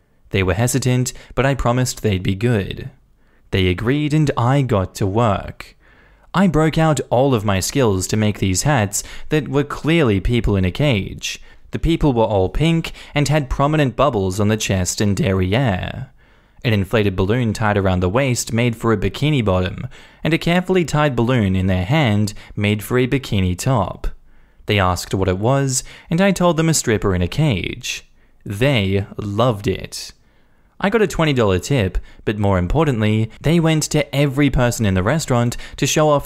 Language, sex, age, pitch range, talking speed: English, male, 20-39, 100-140 Hz, 180 wpm